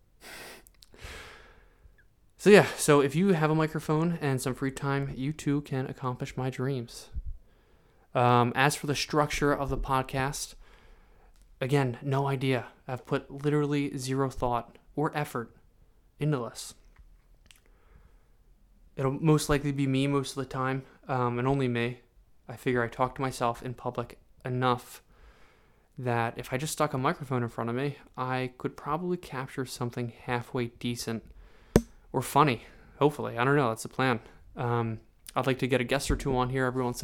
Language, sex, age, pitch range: English, male, 20-39, 120-140 Hz